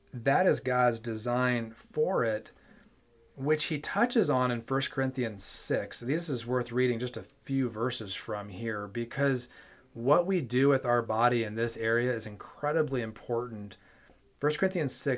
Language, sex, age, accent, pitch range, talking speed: English, male, 30-49, American, 115-135 Hz, 160 wpm